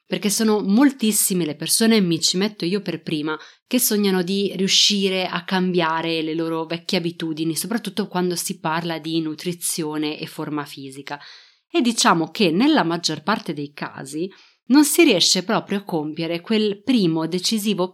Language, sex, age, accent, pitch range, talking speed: Italian, female, 30-49, native, 160-210 Hz, 155 wpm